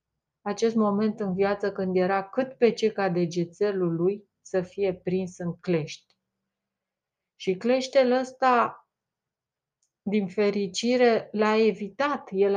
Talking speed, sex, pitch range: 115 wpm, female, 180-225 Hz